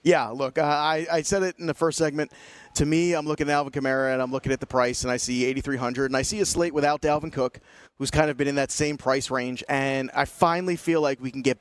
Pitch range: 130-160 Hz